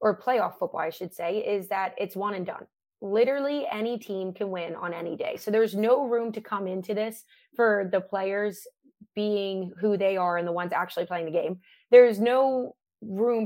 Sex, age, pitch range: female, 20-39, 185-225 Hz